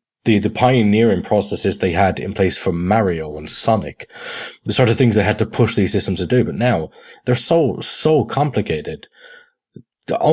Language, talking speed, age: English, 180 wpm, 20-39